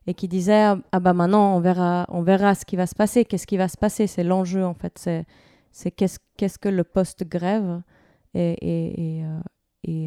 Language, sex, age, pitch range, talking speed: French, female, 20-39, 175-215 Hz, 220 wpm